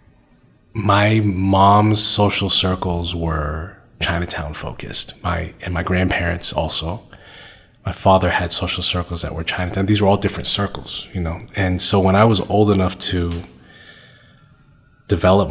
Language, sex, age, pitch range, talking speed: English, male, 30-49, 85-105 Hz, 140 wpm